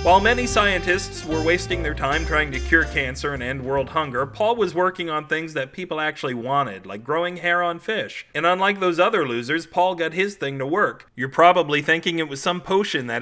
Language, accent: English, American